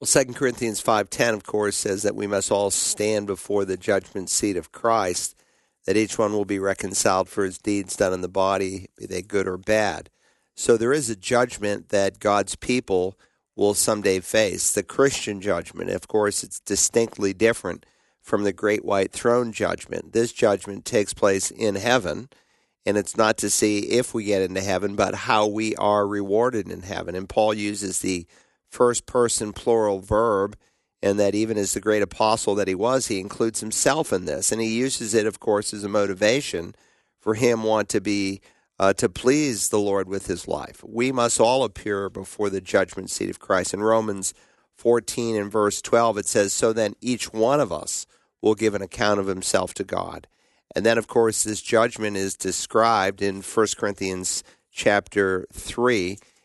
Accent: American